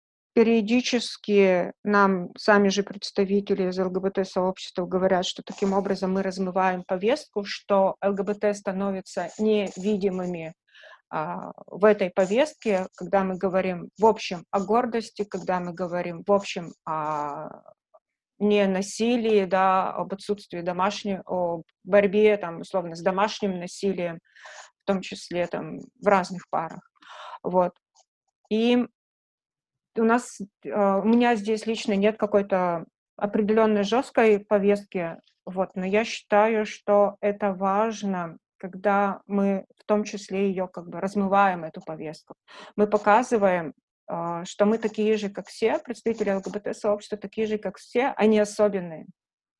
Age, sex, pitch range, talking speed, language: 20-39, female, 185-215 Hz, 125 wpm, Russian